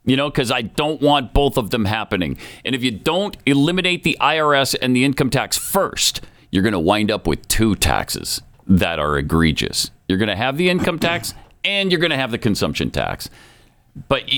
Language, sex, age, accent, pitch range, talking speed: English, male, 50-69, American, 105-145 Hz, 205 wpm